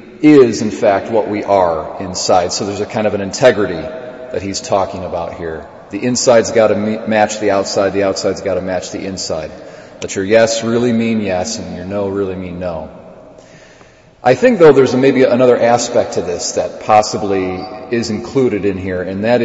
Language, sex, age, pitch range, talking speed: English, male, 40-59, 95-120 Hz, 190 wpm